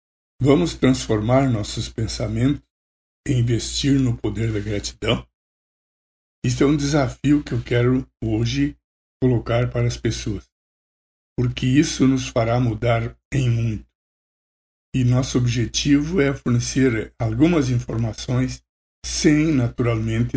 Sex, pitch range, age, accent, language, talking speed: male, 110-135 Hz, 60-79, Brazilian, Portuguese, 110 wpm